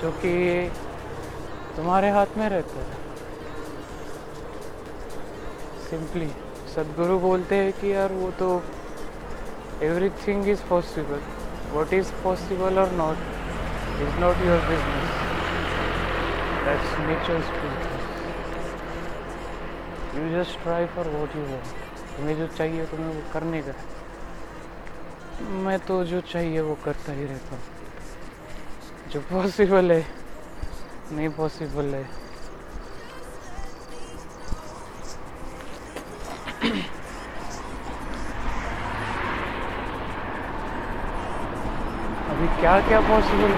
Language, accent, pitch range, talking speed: Marathi, native, 140-185 Hz, 60 wpm